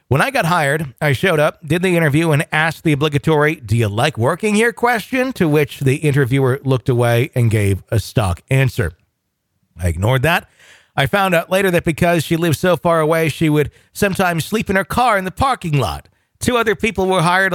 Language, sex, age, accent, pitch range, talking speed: English, male, 50-69, American, 130-170 Hz, 210 wpm